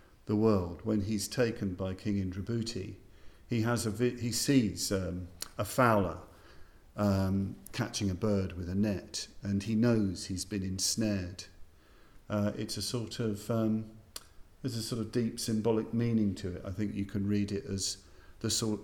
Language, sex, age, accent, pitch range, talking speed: English, male, 50-69, British, 95-110 Hz, 170 wpm